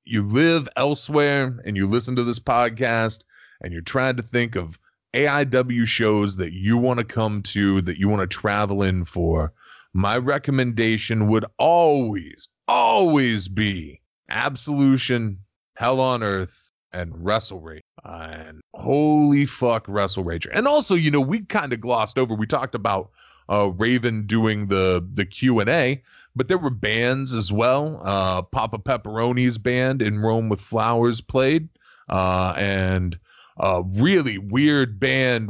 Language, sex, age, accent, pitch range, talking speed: English, male, 30-49, American, 100-125 Hz, 150 wpm